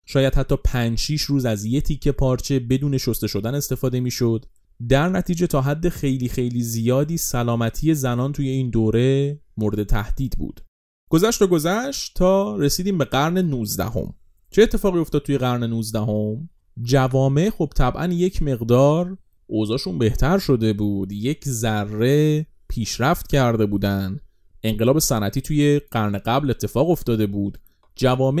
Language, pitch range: Persian, 110-150 Hz